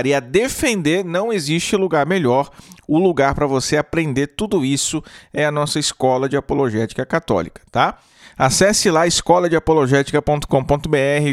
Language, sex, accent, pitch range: Portuguese, male, Brazilian, 140-180 Hz